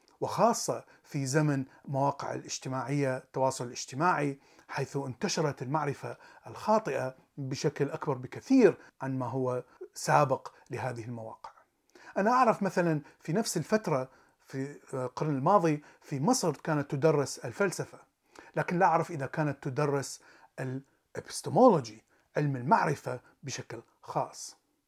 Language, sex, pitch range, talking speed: Arabic, male, 130-165 Hz, 110 wpm